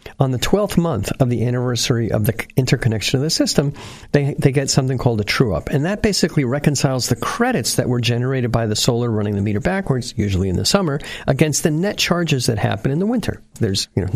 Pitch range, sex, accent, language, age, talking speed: 120-175 Hz, male, American, English, 50-69, 225 wpm